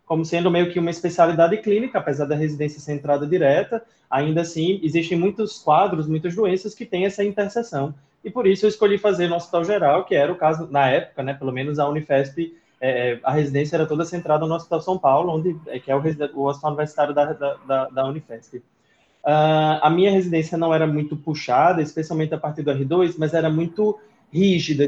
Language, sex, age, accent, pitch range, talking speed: Portuguese, male, 20-39, Brazilian, 150-185 Hz, 205 wpm